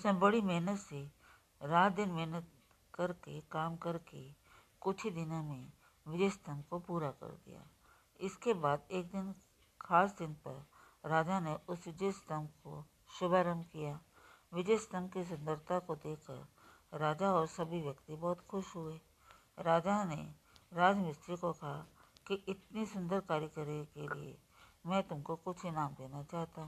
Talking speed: 140 wpm